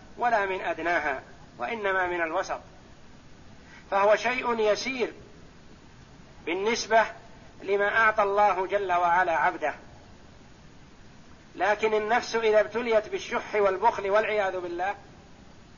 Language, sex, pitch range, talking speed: Arabic, male, 195-230 Hz, 90 wpm